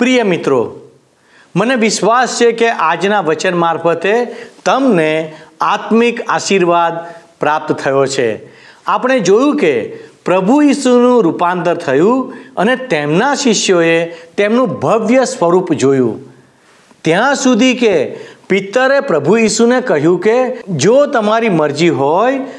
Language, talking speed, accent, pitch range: Gujarati, 110 wpm, native, 170-245 Hz